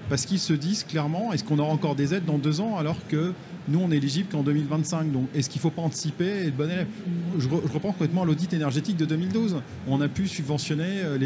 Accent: French